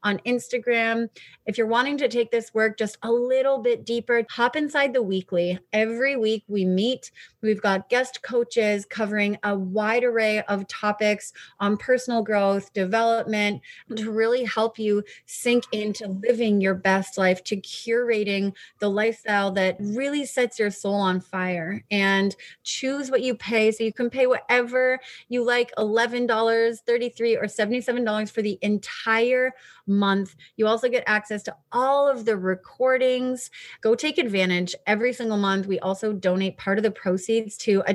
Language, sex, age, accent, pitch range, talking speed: English, female, 30-49, American, 195-240 Hz, 160 wpm